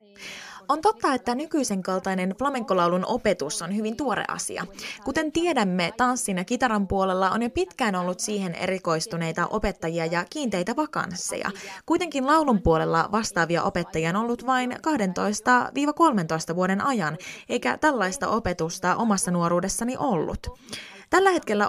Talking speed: 125 wpm